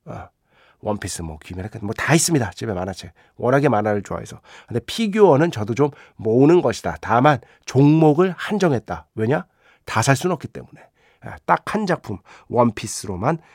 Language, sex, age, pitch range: Korean, male, 40-59, 105-160 Hz